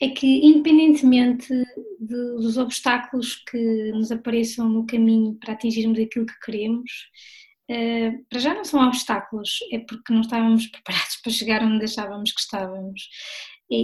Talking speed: 140 wpm